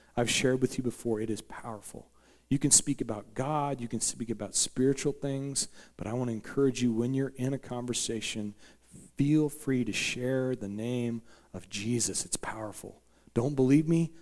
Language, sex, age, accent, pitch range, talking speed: English, male, 40-59, American, 110-130 Hz, 180 wpm